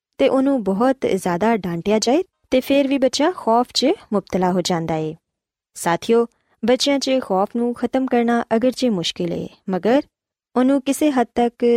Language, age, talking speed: Punjabi, 20-39, 160 wpm